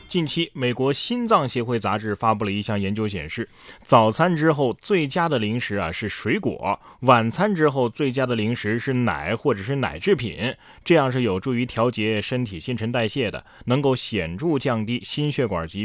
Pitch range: 105-135 Hz